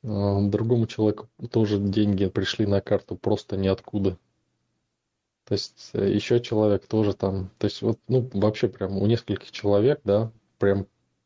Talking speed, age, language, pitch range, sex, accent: 140 wpm, 20-39, Russian, 100-115 Hz, male, native